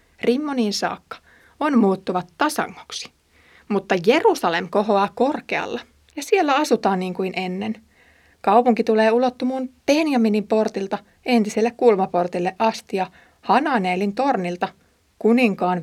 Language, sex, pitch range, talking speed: Finnish, female, 185-245 Hz, 100 wpm